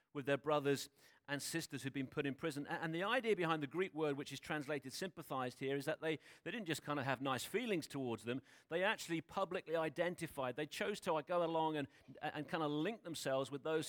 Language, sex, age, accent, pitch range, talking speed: English, male, 40-59, British, 145-180 Hz, 240 wpm